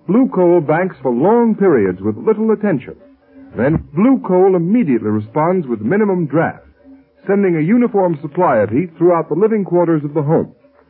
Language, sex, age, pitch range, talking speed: English, male, 60-79, 150-220 Hz, 165 wpm